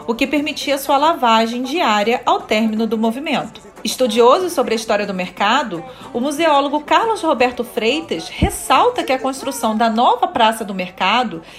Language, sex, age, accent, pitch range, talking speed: Portuguese, female, 40-59, Brazilian, 230-295 Hz, 155 wpm